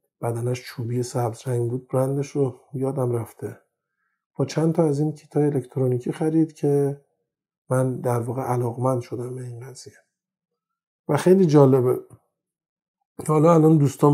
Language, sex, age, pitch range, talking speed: Persian, male, 50-69, 125-145 Hz, 135 wpm